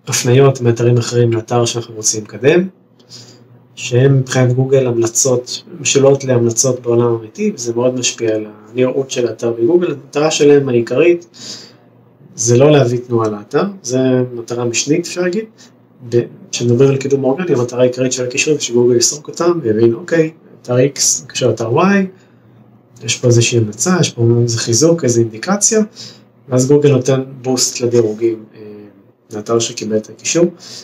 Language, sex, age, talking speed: Hebrew, male, 20-39, 140 wpm